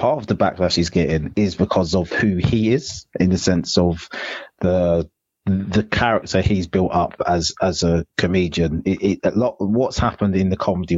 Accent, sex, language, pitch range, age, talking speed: British, male, English, 85-105 Hz, 30-49, 190 wpm